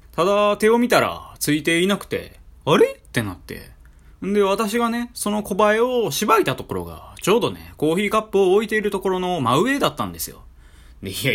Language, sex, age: Japanese, male, 20-39